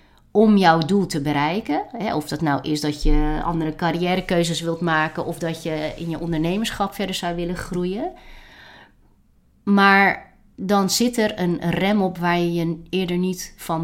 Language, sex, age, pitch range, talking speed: Dutch, female, 30-49, 160-195 Hz, 165 wpm